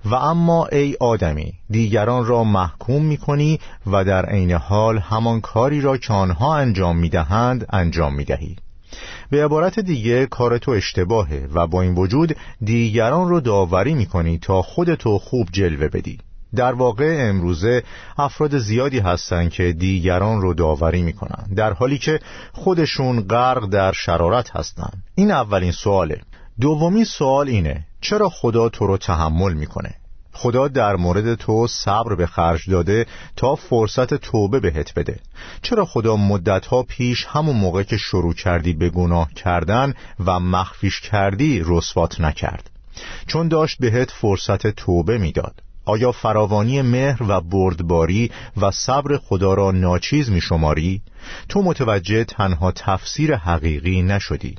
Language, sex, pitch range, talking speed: Persian, male, 90-125 Hz, 135 wpm